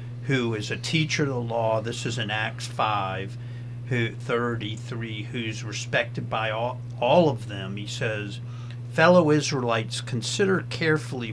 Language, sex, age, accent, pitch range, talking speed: English, male, 50-69, American, 115-135 Hz, 145 wpm